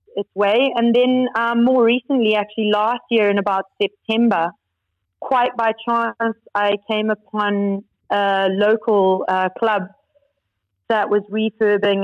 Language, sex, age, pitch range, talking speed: English, female, 30-49, 190-225 Hz, 130 wpm